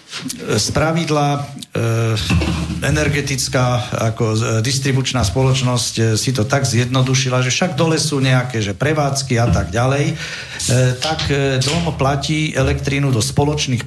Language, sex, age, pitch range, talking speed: Slovak, male, 50-69, 120-140 Hz, 115 wpm